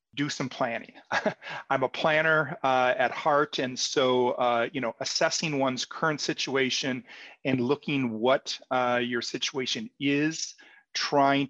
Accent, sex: American, male